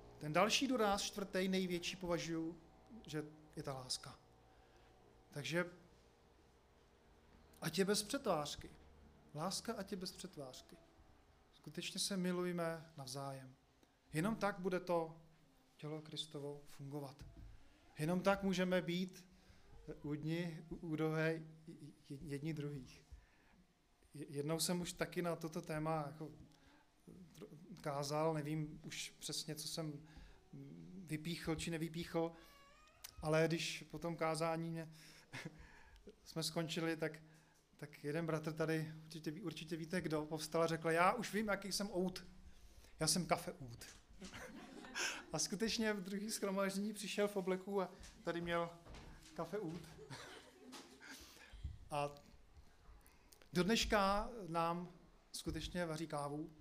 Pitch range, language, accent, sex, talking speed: 150-180 Hz, Czech, native, male, 115 wpm